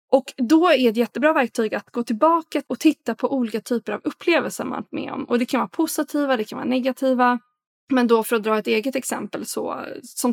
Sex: female